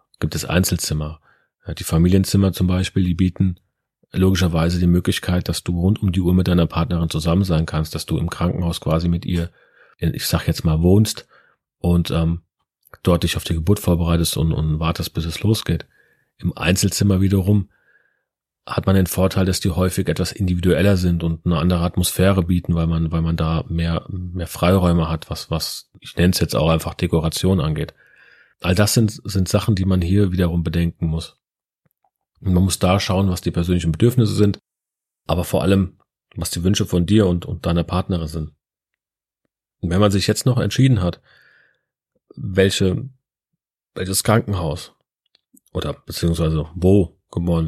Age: 40-59